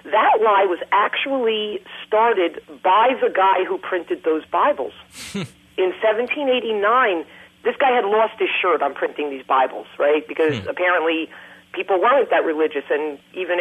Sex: female